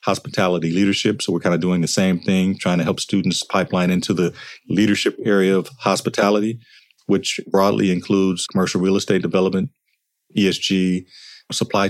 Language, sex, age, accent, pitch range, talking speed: English, male, 40-59, American, 90-105 Hz, 150 wpm